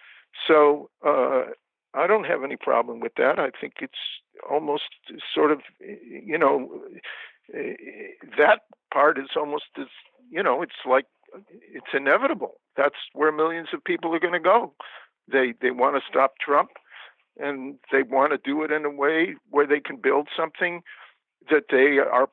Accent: American